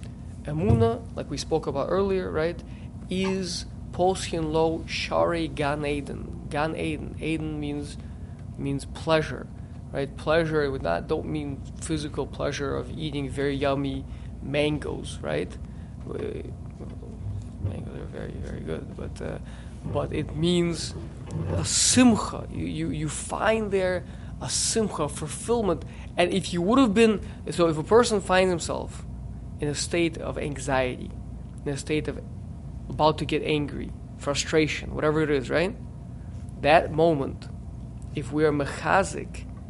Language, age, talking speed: English, 20-39, 135 wpm